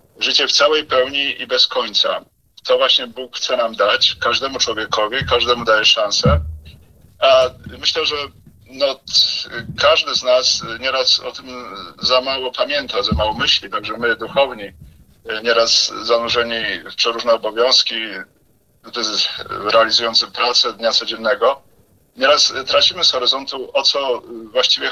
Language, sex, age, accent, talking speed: Polish, male, 40-59, native, 130 wpm